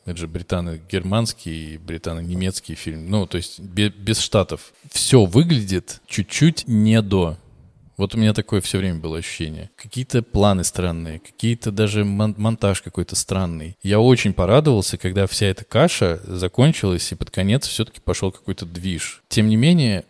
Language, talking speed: Russian, 150 wpm